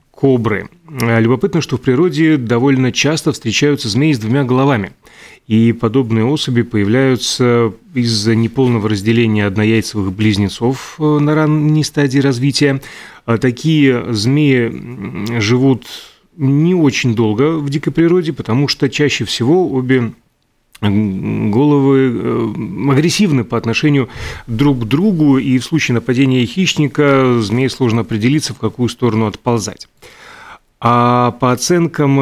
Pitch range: 115-145 Hz